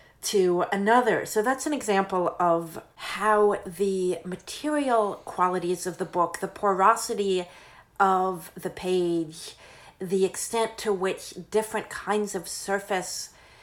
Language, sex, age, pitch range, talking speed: English, female, 40-59, 180-220 Hz, 120 wpm